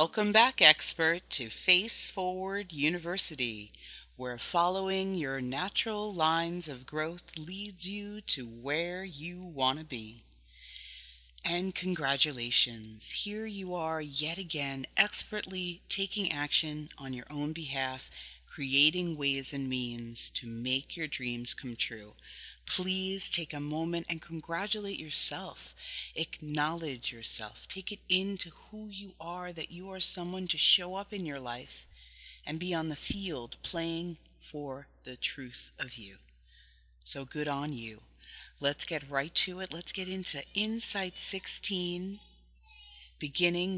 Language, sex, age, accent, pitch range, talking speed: English, female, 30-49, American, 130-185 Hz, 135 wpm